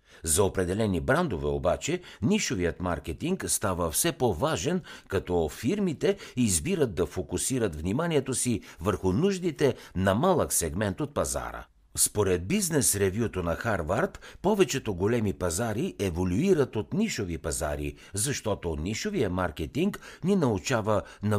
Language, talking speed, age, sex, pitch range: Bulgarian, 110 wpm, 60-79, male, 90-140 Hz